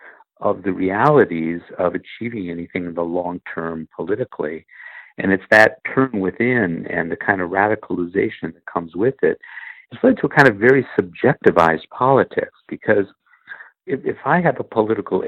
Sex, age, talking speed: male, 60-79, 155 wpm